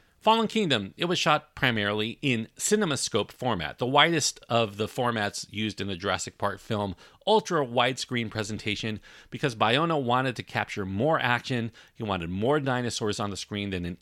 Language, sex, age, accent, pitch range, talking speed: English, male, 40-59, American, 100-140 Hz, 170 wpm